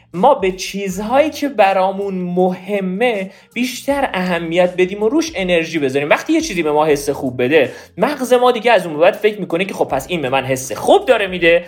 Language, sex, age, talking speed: Persian, male, 40-59, 200 wpm